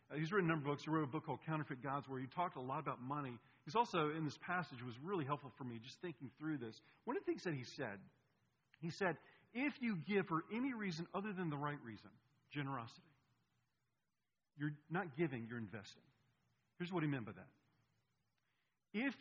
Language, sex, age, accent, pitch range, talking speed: English, male, 50-69, American, 130-185 Hz, 210 wpm